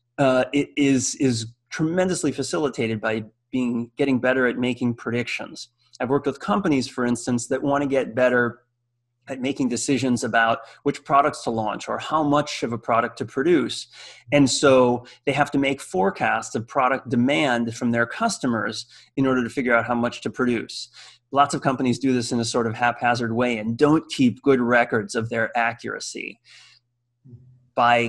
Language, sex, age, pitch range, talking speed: English, male, 30-49, 115-135 Hz, 175 wpm